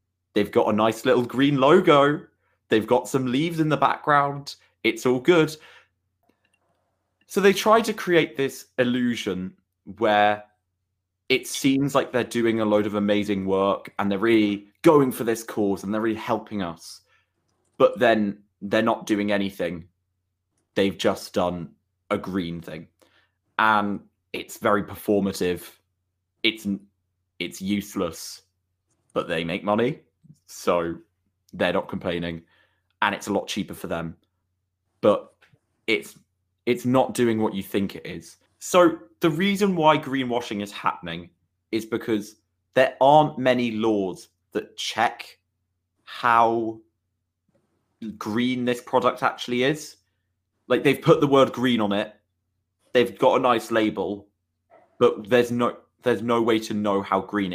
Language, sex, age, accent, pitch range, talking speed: English, male, 20-39, British, 95-120 Hz, 140 wpm